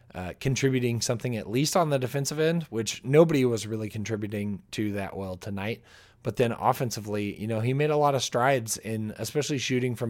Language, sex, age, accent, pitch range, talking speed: English, male, 20-39, American, 105-130 Hz, 195 wpm